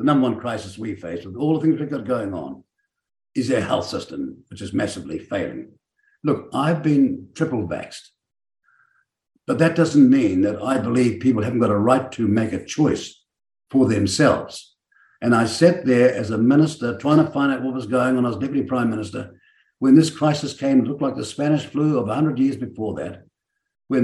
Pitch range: 110-150 Hz